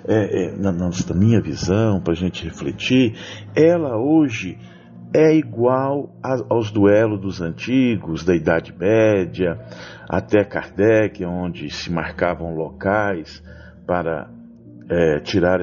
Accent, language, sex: Brazilian, Portuguese, male